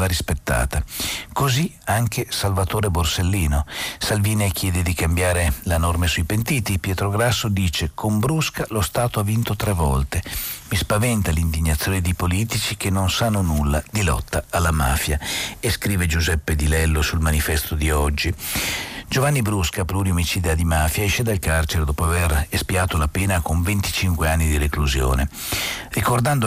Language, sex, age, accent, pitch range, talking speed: Italian, male, 50-69, native, 80-105 Hz, 145 wpm